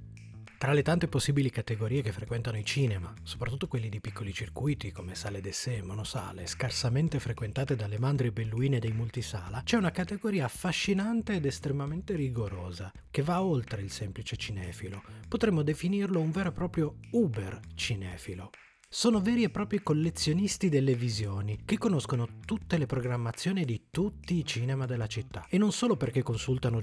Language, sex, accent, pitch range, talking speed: Italian, male, native, 110-165 Hz, 155 wpm